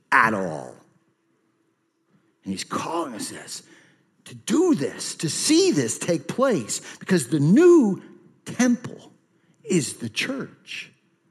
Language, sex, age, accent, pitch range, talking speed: English, male, 50-69, American, 130-195 Hz, 110 wpm